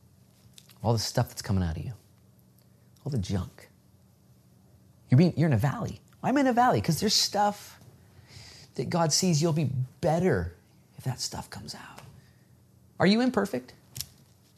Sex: male